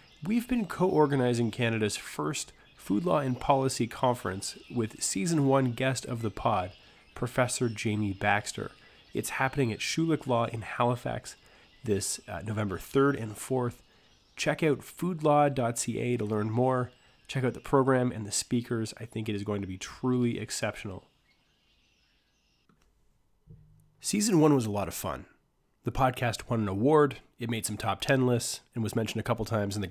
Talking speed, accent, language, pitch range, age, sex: 165 wpm, American, English, 105-135 Hz, 30-49, male